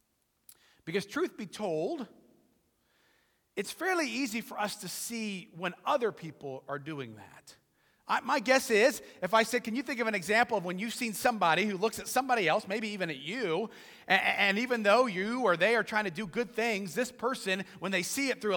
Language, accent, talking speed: English, American, 205 wpm